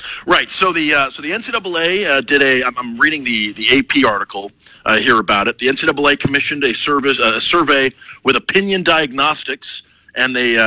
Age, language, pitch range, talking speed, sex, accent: 40-59, English, 130-165 Hz, 200 wpm, male, American